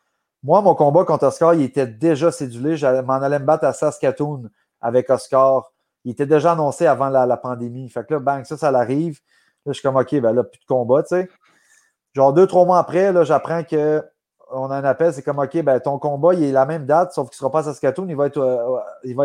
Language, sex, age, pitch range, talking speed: French, male, 30-49, 130-155 Hz, 245 wpm